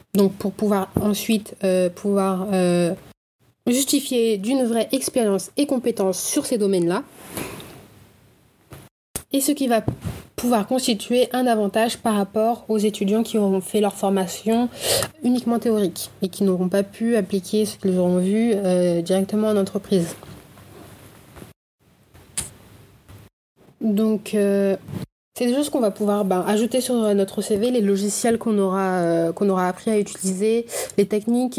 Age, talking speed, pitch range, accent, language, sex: 20-39, 135 wpm, 195-230 Hz, French, French, female